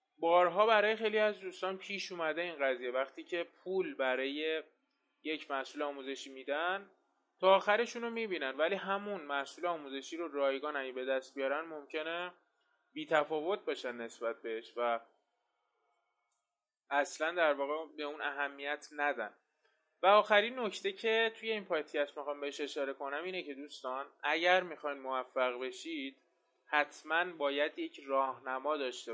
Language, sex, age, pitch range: Persian, male, 20-39, 135-175 Hz